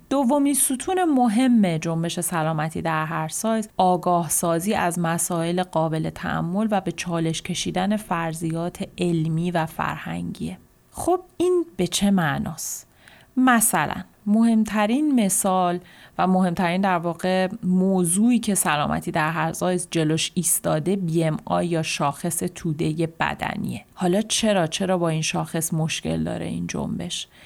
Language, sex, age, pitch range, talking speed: Persian, female, 30-49, 160-205 Hz, 125 wpm